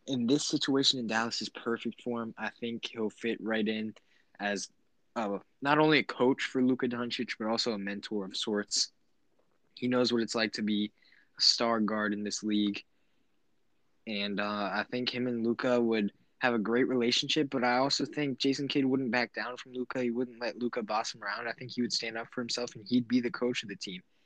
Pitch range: 110-125 Hz